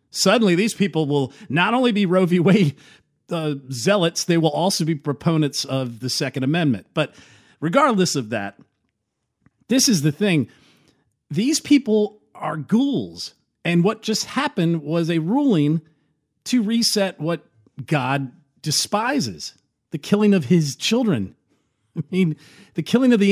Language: English